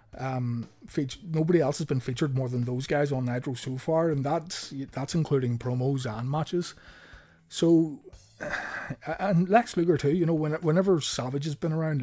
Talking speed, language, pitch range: 170 wpm, English, 120-150 Hz